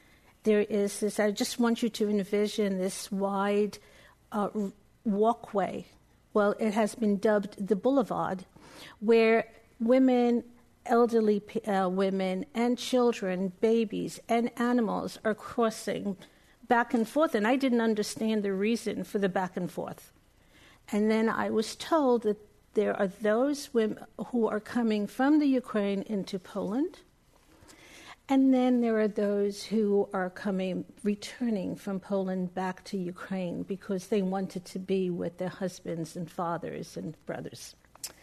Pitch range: 200-235 Hz